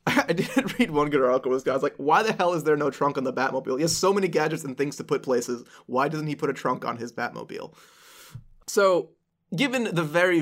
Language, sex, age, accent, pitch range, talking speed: English, male, 20-39, American, 130-175 Hz, 260 wpm